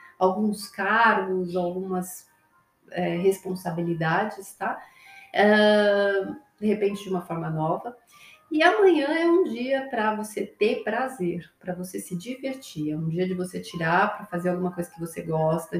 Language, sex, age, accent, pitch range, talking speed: Portuguese, female, 30-49, Brazilian, 175-245 Hz, 140 wpm